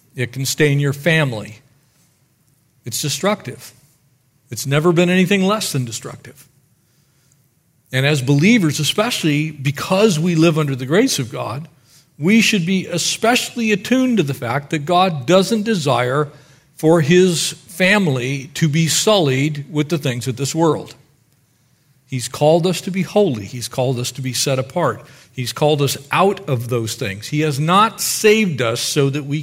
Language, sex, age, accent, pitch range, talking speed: English, male, 50-69, American, 130-165 Hz, 160 wpm